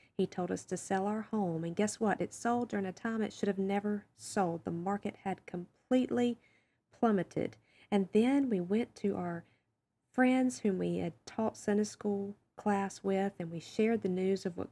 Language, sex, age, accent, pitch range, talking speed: English, female, 40-59, American, 180-220 Hz, 190 wpm